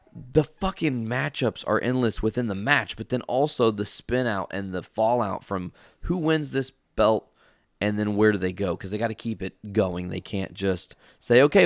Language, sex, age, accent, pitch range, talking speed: English, male, 20-39, American, 90-125 Hz, 205 wpm